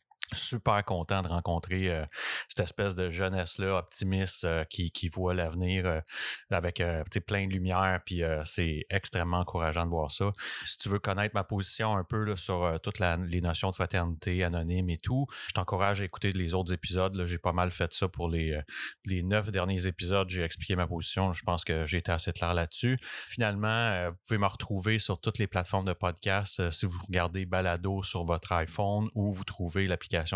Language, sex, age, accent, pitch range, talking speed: English, male, 30-49, Canadian, 85-100 Hz, 200 wpm